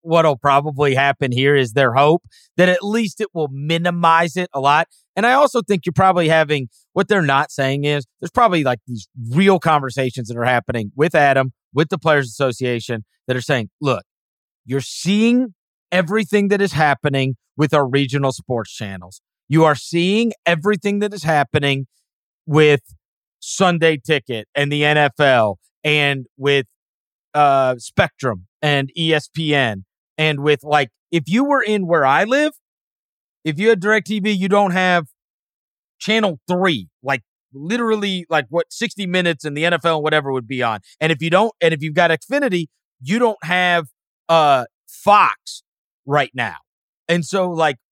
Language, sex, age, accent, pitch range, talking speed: English, male, 40-59, American, 135-195 Hz, 160 wpm